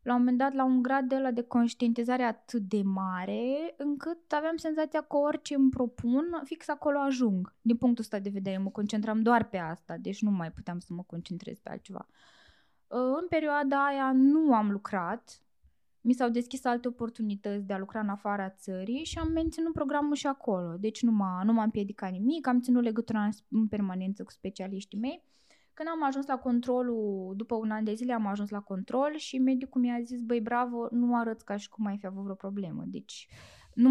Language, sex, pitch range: Romanian, female, 205-270 Hz